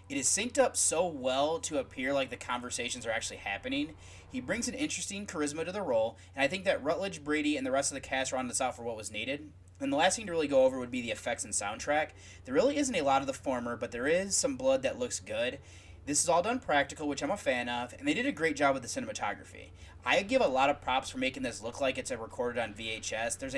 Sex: male